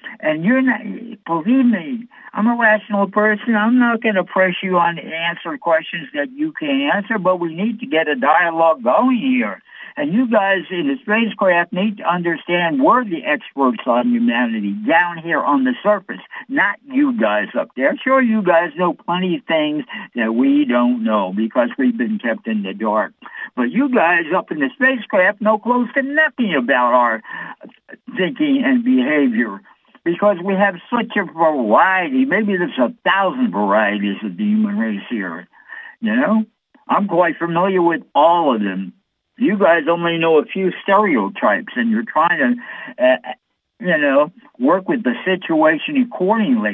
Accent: American